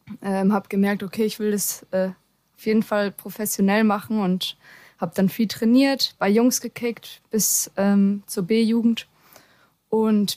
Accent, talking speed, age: German, 150 wpm, 20-39